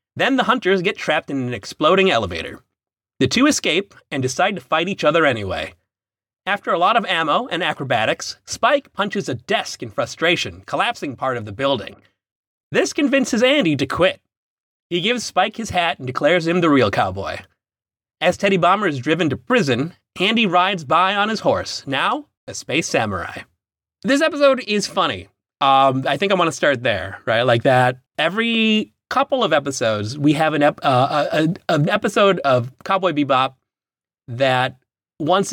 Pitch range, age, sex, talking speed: 130-190 Hz, 30-49, male, 175 wpm